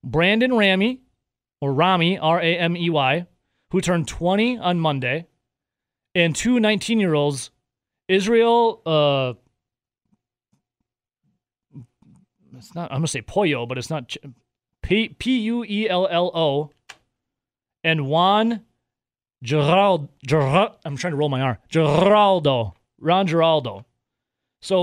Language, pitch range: English, 145-185 Hz